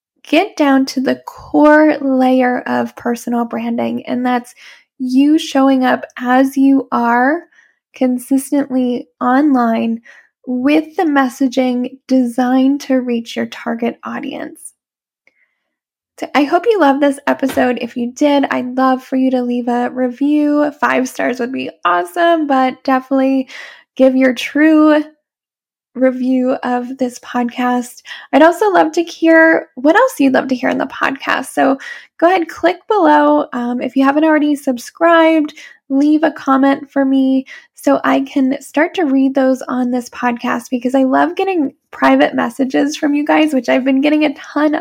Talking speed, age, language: 155 wpm, 10-29, English